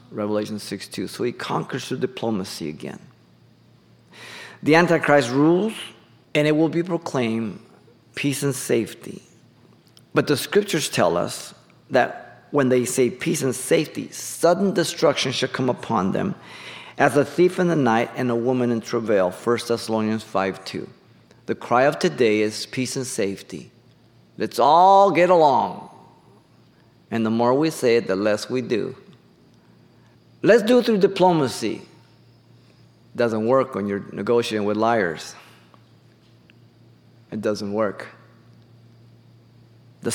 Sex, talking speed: male, 135 wpm